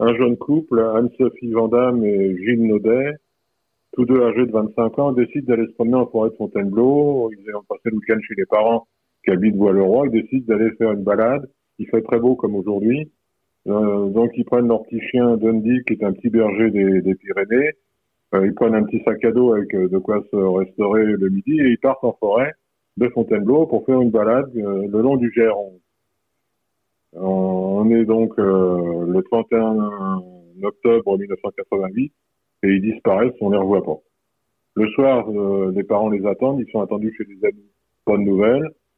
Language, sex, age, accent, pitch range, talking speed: French, male, 50-69, French, 100-120 Hz, 195 wpm